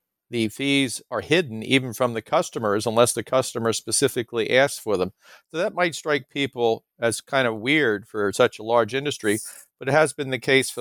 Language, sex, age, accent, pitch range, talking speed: English, male, 50-69, American, 120-145 Hz, 200 wpm